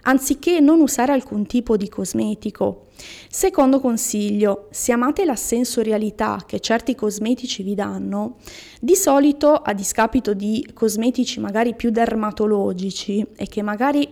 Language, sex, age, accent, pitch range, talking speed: Italian, female, 20-39, native, 205-260 Hz, 130 wpm